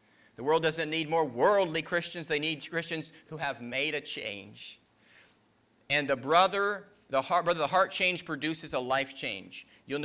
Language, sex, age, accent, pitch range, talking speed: English, male, 40-59, American, 145-195 Hz, 175 wpm